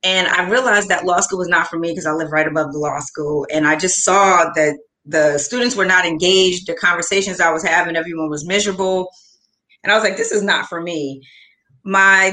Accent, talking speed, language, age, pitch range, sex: American, 225 wpm, English, 30-49, 160-190 Hz, female